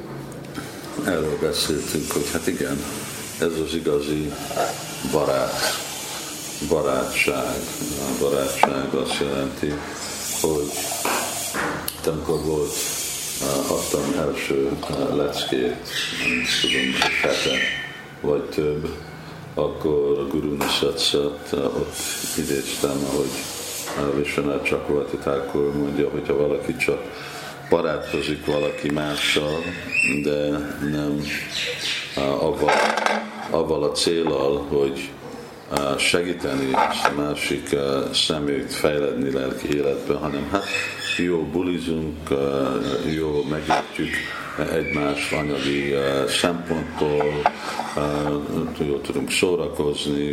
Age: 50-69